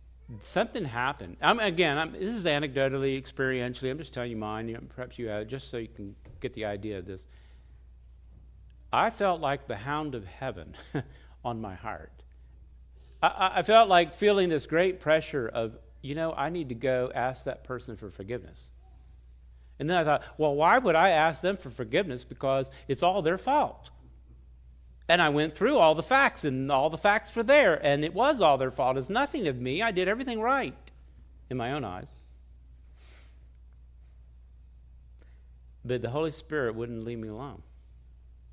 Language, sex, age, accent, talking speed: English, male, 50-69, American, 180 wpm